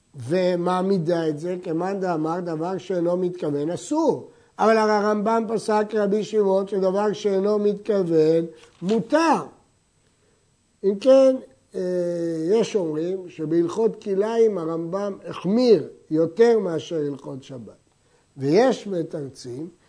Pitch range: 165-235 Hz